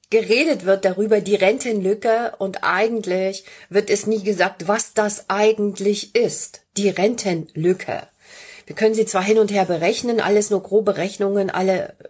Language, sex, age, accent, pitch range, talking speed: German, female, 30-49, German, 190-235 Hz, 150 wpm